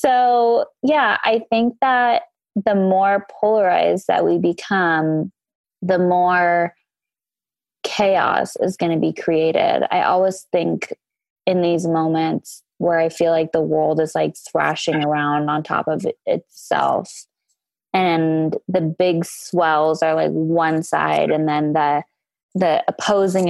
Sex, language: female, English